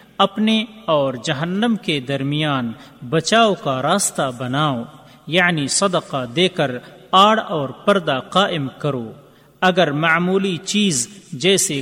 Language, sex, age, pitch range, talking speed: Urdu, male, 40-59, 140-200 Hz, 110 wpm